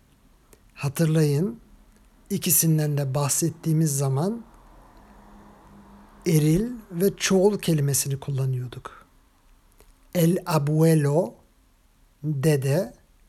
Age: 50-69